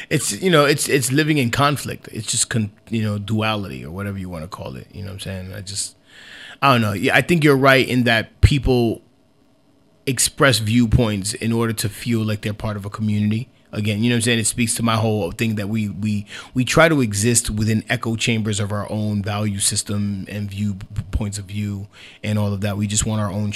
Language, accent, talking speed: English, American, 235 wpm